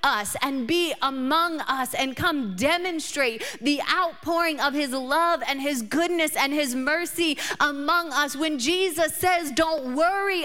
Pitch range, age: 290-340 Hz, 30-49